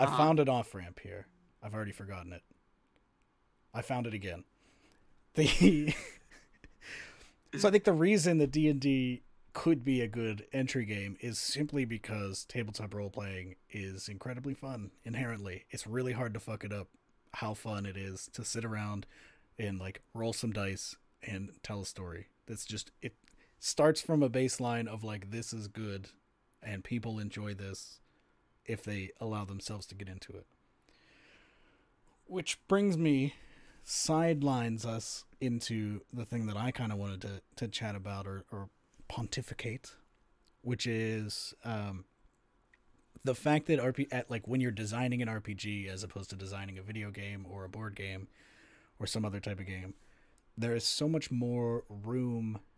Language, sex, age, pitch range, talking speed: English, male, 30-49, 100-125 Hz, 160 wpm